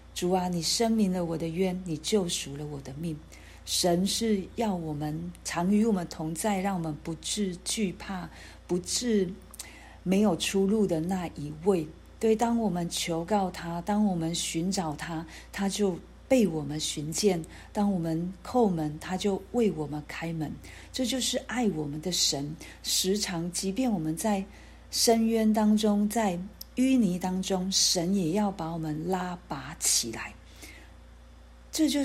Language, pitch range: Chinese, 160-200 Hz